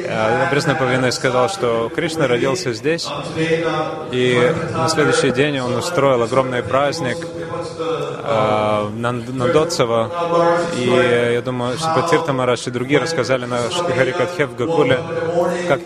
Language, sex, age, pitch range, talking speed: Russian, male, 20-39, 130-170 Hz, 120 wpm